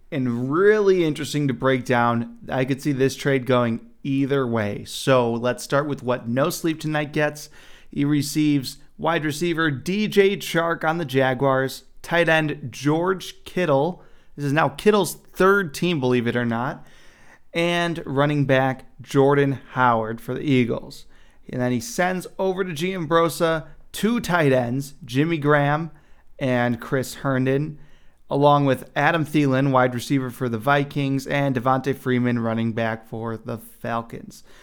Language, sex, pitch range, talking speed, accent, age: English, male, 125-150 Hz, 150 wpm, American, 30-49